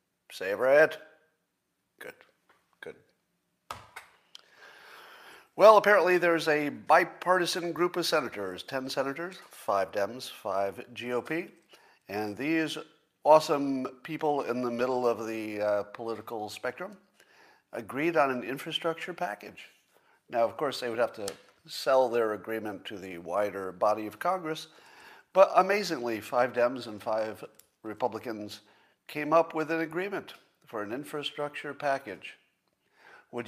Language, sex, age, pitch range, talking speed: English, male, 50-69, 120-165 Hz, 120 wpm